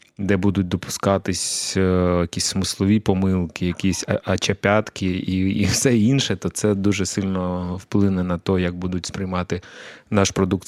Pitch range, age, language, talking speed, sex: 90-105 Hz, 20-39, Ukrainian, 130 wpm, male